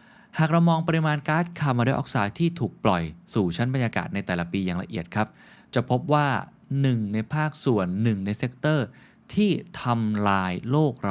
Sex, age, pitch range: male, 20-39, 100-140 Hz